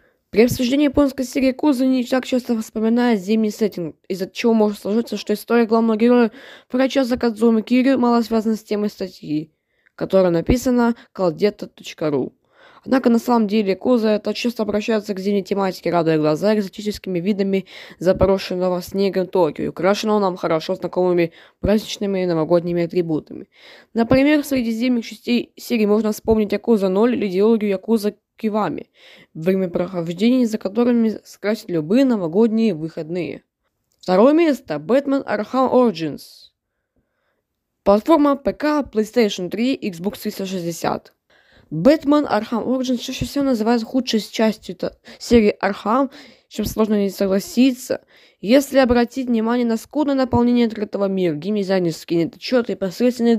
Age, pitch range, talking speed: 20-39, 195-245 Hz, 130 wpm